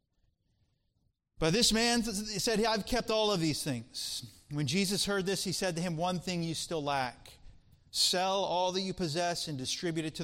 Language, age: English, 30-49